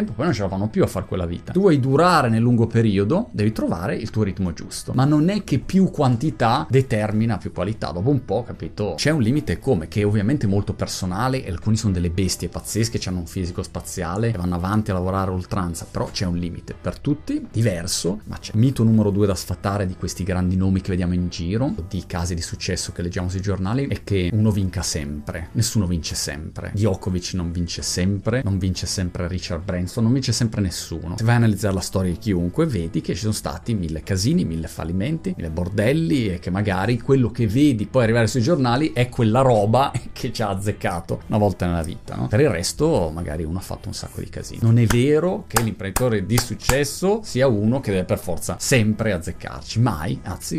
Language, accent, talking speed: Italian, native, 215 wpm